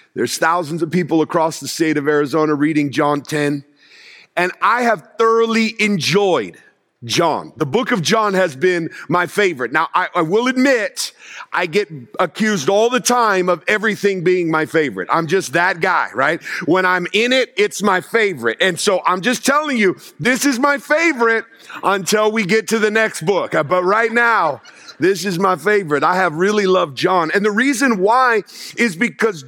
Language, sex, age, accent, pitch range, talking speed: English, male, 50-69, American, 180-240 Hz, 180 wpm